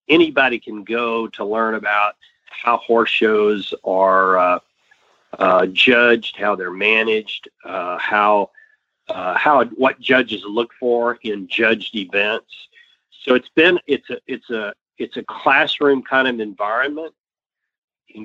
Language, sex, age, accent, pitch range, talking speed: English, male, 40-59, American, 110-140 Hz, 135 wpm